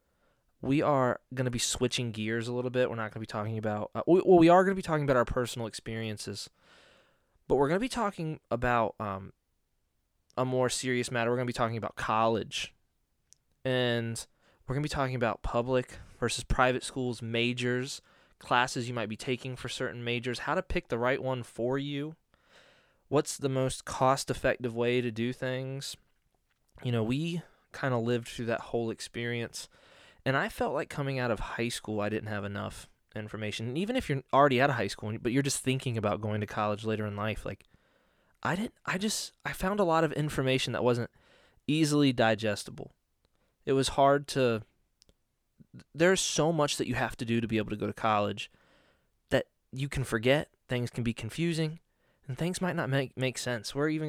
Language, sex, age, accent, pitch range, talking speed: English, male, 20-39, American, 115-140 Hz, 200 wpm